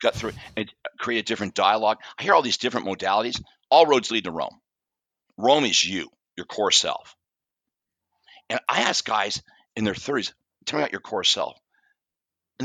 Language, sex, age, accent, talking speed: English, male, 50-69, American, 185 wpm